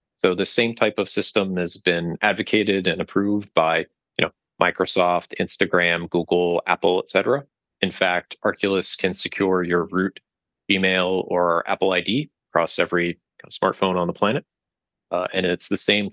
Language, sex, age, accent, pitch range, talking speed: English, male, 30-49, American, 90-105 Hz, 160 wpm